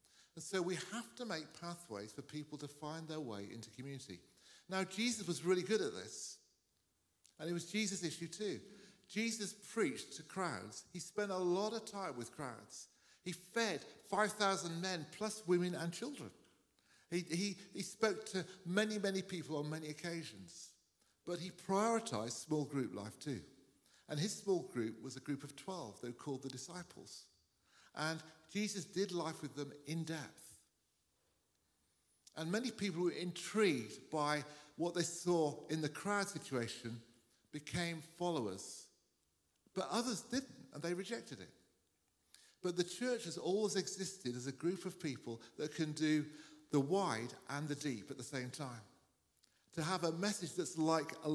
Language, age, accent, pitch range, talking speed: English, 50-69, British, 145-190 Hz, 165 wpm